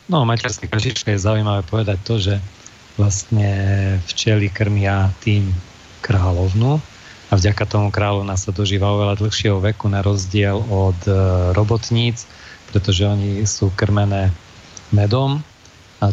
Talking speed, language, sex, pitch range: 125 wpm, Slovak, male, 100-110 Hz